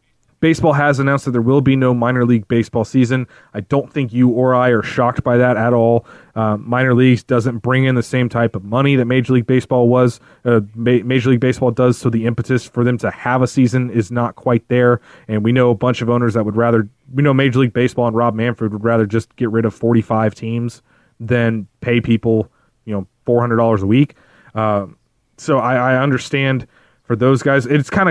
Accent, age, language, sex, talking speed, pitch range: American, 20-39, English, male, 220 wpm, 115-140 Hz